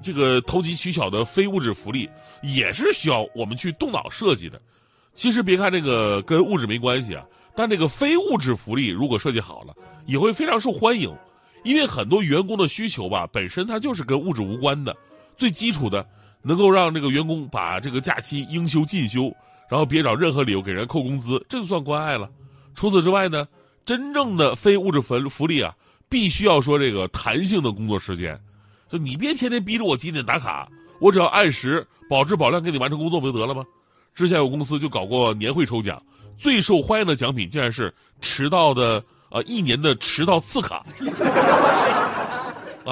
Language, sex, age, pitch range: Chinese, male, 30-49, 120-185 Hz